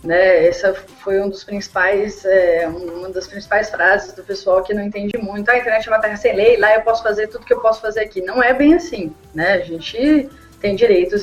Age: 20-39